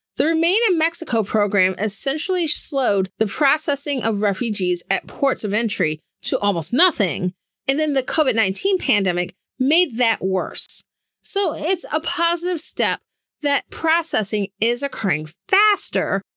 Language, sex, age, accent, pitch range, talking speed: English, female, 40-59, American, 195-290 Hz, 130 wpm